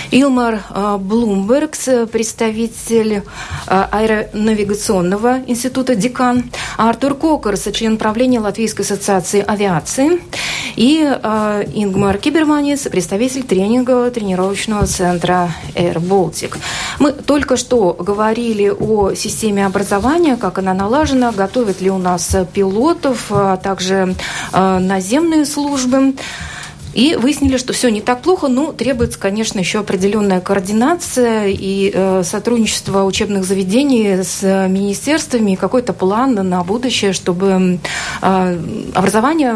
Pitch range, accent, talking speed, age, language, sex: 190-250 Hz, native, 115 wpm, 30-49, Russian, female